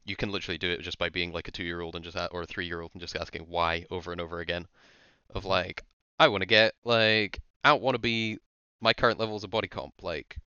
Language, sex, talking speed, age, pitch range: English, male, 255 wpm, 20-39, 85-110 Hz